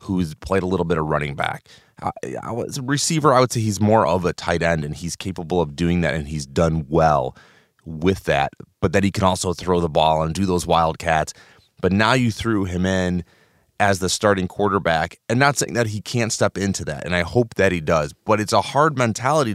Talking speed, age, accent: 225 wpm, 30-49, American